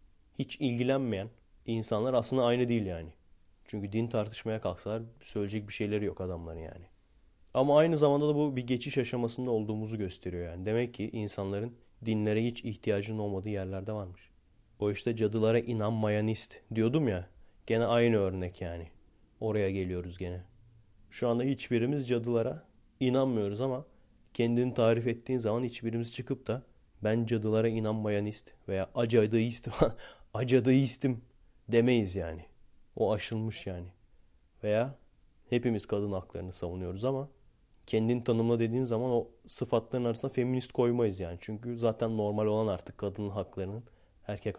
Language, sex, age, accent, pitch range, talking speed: Turkish, male, 30-49, native, 95-120 Hz, 135 wpm